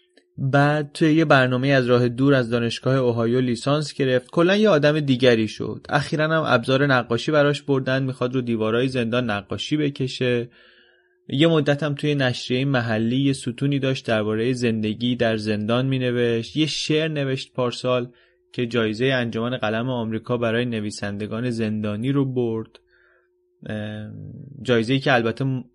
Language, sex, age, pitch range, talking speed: Persian, male, 20-39, 120-145 Hz, 135 wpm